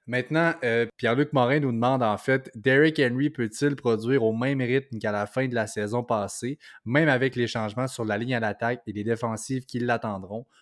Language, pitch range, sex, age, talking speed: French, 115-135 Hz, male, 20-39, 205 wpm